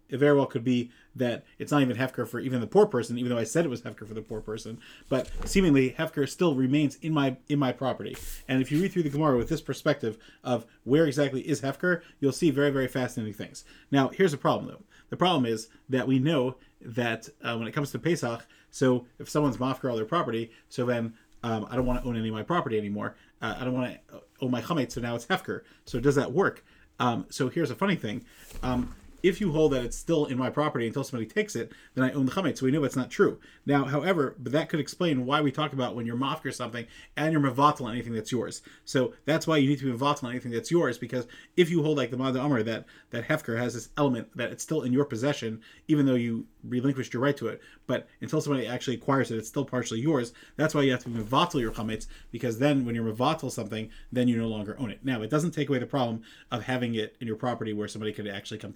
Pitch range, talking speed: 120-145 Hz, 260 wpm